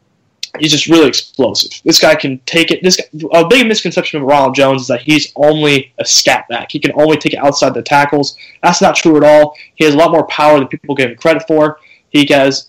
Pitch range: 135-170 Hz